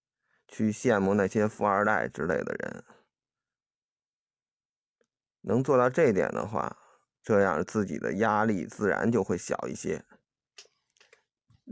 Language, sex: Chinese, male